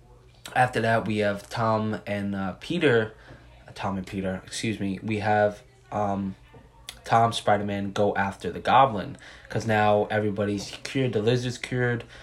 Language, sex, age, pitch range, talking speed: English, male, 20-39, 100-125 Hz, 140 wpm